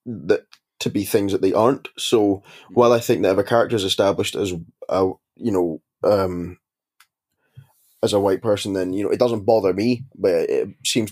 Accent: British